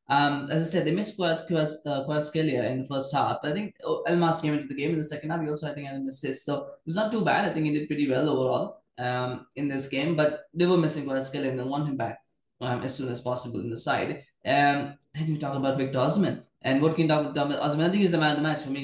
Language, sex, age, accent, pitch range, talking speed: English, male, 20-39, Indian, 140-170 Hz, 300 wpm